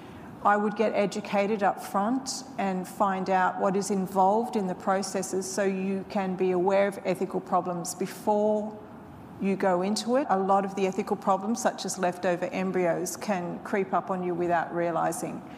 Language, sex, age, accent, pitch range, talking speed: English, female, 40-59, Australian, 180-215 Hz, 175 wpm